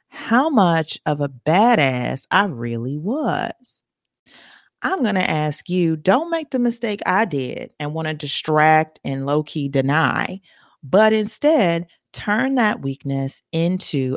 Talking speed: 135 wpm